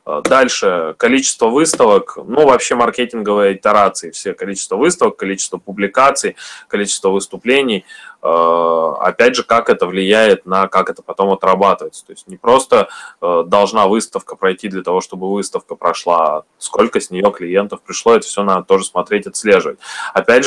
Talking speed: 140 wpm